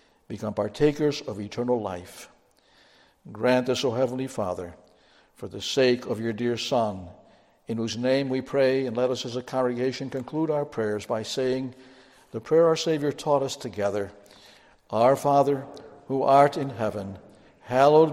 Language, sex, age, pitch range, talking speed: English, male, 60-79, 115-145 Hz, 155 wpm